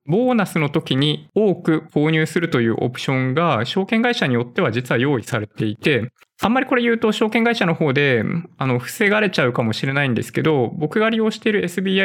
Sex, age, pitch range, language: male, 20-39, 125-185 Hz, Japanese